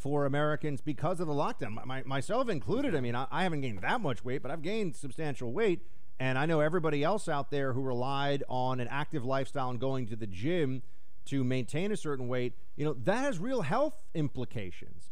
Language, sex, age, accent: English, male, 40-59, American